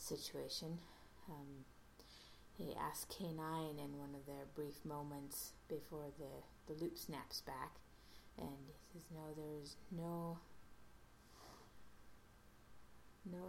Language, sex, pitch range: English, female, 145-170 Hz